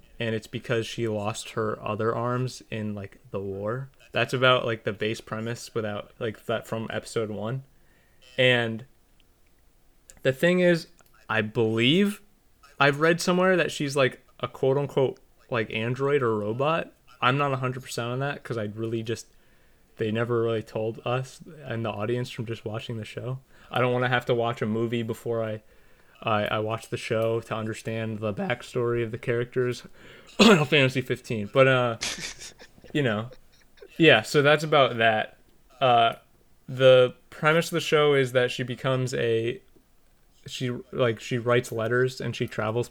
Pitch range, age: 110-130 Hz, 20-39